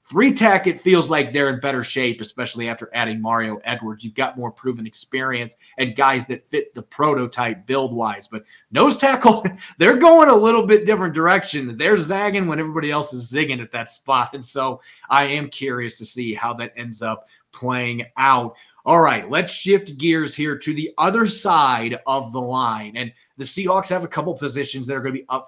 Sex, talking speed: male, 200 wpm